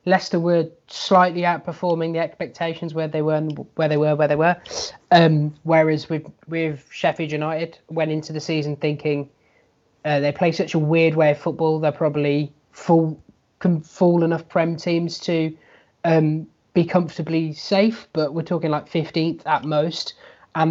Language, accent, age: English, British, 20-39